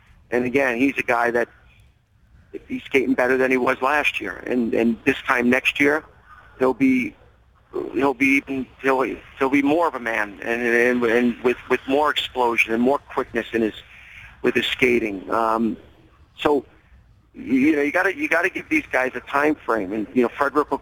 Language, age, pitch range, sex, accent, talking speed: English, 50-69, 115-135 Hz, male, American, 195 wpm